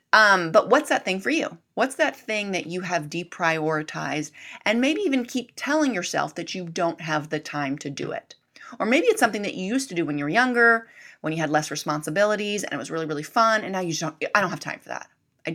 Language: English